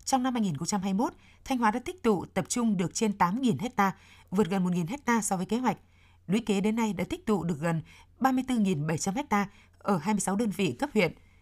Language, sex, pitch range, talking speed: Vietnamese, female, 175-225 Hz, 200 wpm